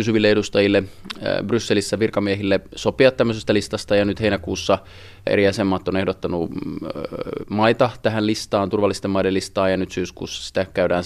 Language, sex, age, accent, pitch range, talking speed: Finnish, male, 20-39, native, 90-105 Hz, 135 wpm